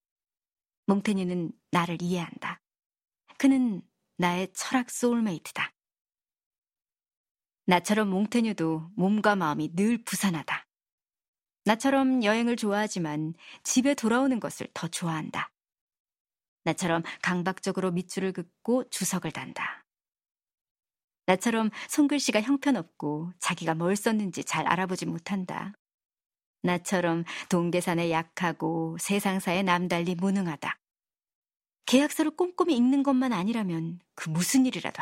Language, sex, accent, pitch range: Korean, male, native, 175-230 Hz